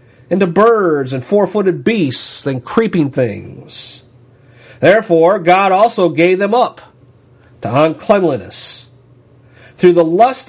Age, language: 50-69, English